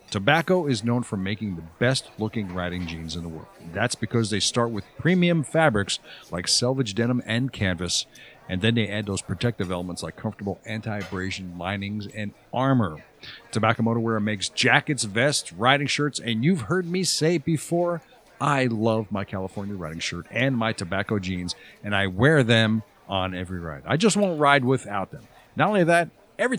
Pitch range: 100-145 Hz